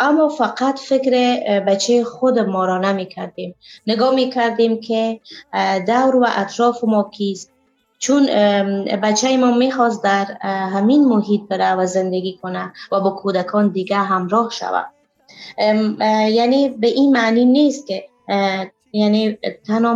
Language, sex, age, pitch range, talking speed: Persian, female, 20-39, 195-230 Hz, 130 wpm